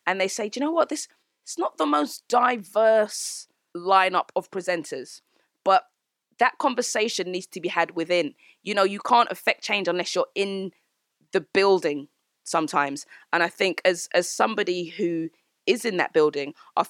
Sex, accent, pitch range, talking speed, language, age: female, British, 165-205 Hz, 170 wpm, English, 20-39